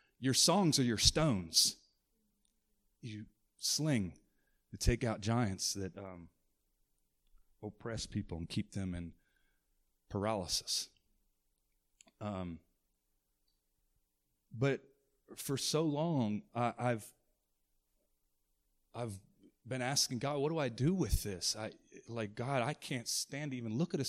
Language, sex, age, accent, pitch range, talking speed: English, male, 30-49, American, 100-135 Hz, 120 wpm